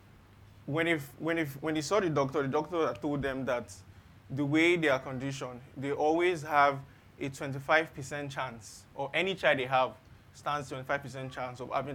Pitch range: 105-140 Hz